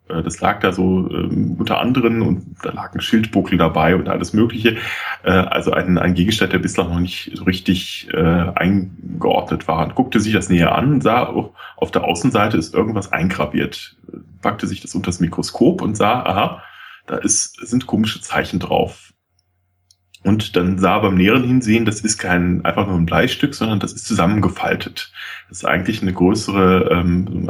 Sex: male